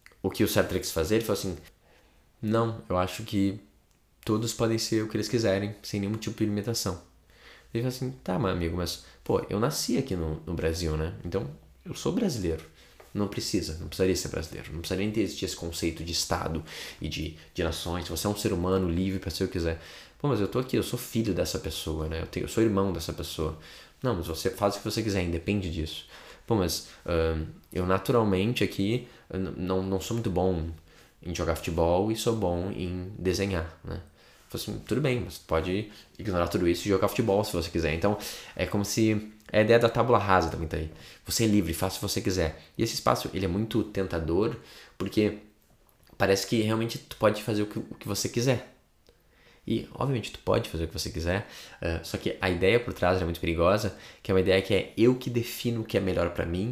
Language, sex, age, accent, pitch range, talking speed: Portuguese, male, 20-39, Brazilian, 85-110 Hz, 220 wpm